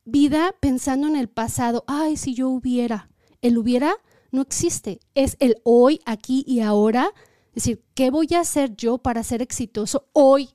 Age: 30-49